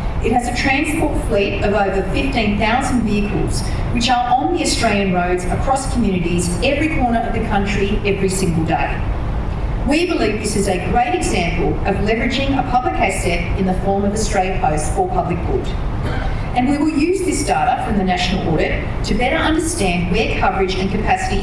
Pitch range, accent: 190-285 Hz, Australian